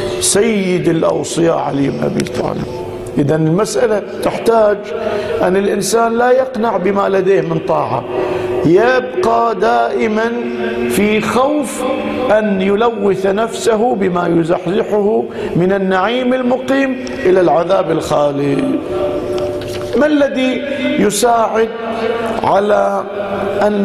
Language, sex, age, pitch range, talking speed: Arabic, male, 50-69, 175-220 Hz, 90 wpm